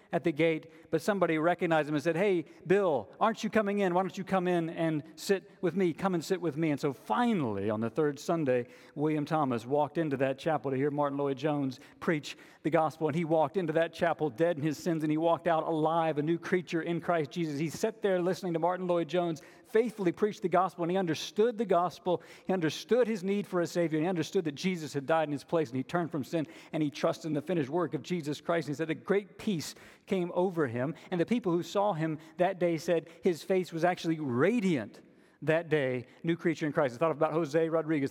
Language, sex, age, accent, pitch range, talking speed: English, male, 50-69, American, 155-185 Hz, 240 wpm